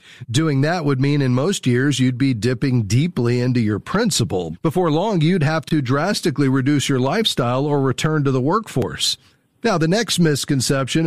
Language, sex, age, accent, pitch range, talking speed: English, male, 40-59, American, 125-150 Hz, 175 wpm